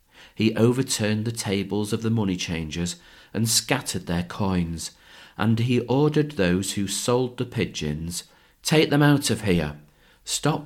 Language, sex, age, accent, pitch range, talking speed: English, male, 40-59, British, 85-115 Hz, 145 wpm